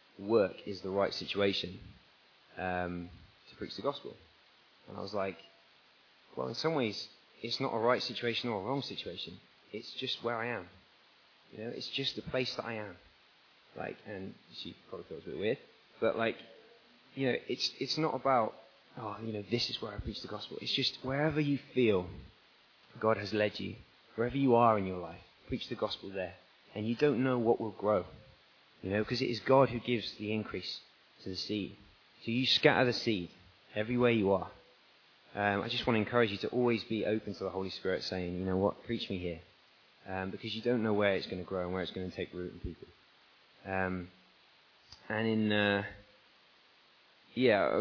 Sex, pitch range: male, 95-120 Hz